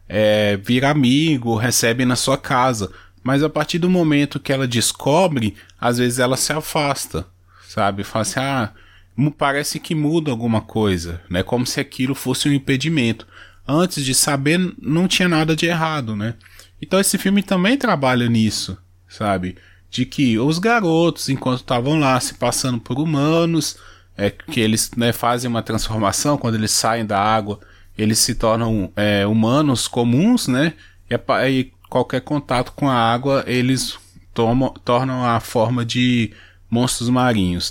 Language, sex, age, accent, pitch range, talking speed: Portuguese, male, 20-39, Brazilian, 105-145 Hz, 155 wpm